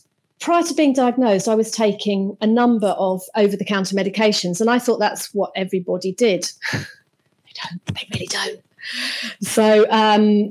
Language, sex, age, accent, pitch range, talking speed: English, female, 40-59, British, 200-245 Hz, 150 wpm